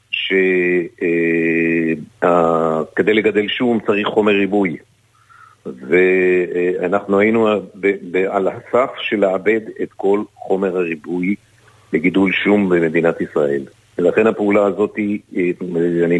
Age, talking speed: 50-69, 90 wpm